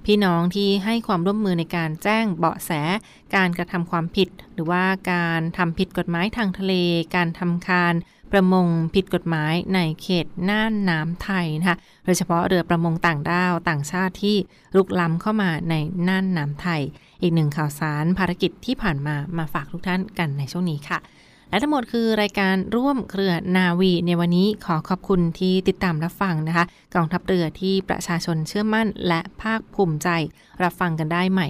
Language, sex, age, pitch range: Thai, female, 20-39, 170-195 Hz